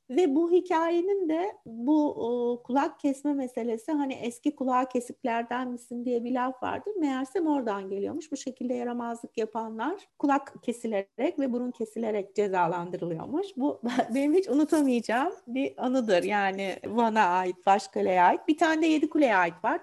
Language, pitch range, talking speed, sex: Turkish, 230-310 Hz, 145 wpm, female